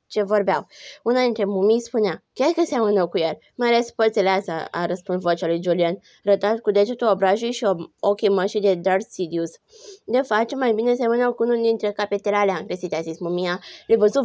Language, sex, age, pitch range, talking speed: Romanian, female, 20-39, 185-235 Hz, 185 wpm